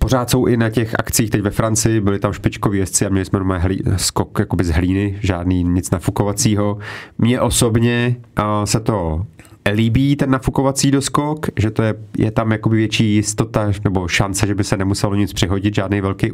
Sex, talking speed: male, 180 wpm